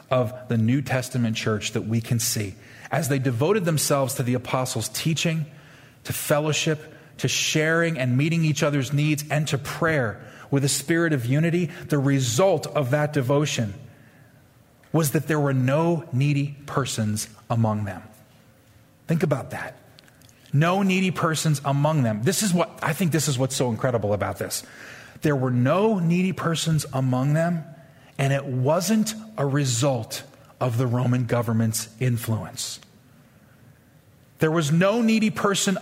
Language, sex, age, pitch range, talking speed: English, male, 30-49, 130-170 Hz, 150 wpm